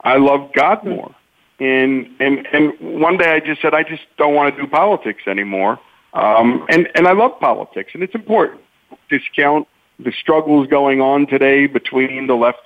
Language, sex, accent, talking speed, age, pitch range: English, male, American, 180 wpm, 50-69, 130-170 Hz